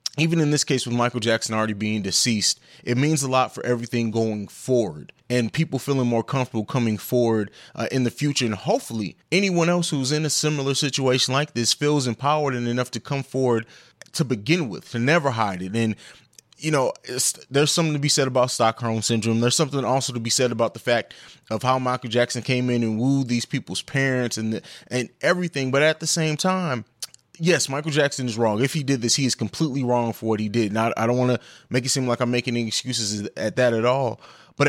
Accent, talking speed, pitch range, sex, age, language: American, 225 wpm, 120-150 Hz, male, 30-49, English